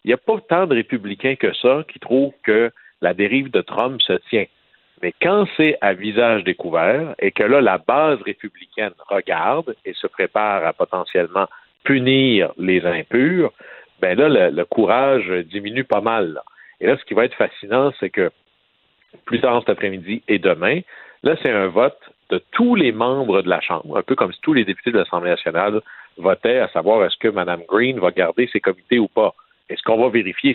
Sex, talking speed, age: male, 200 wpm, 60-79